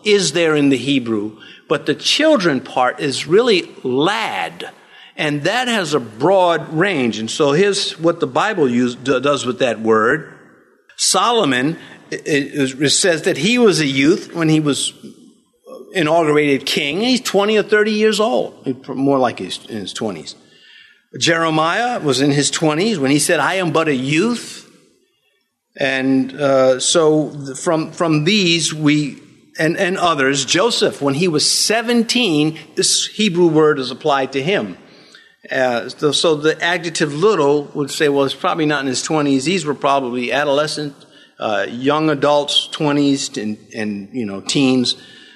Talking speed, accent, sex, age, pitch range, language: 150 wpm, American, male, 50-69, 135-175 Hz, English